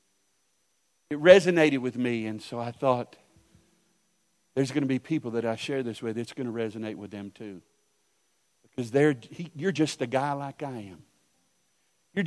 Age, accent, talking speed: 50-69, American, 175 wpm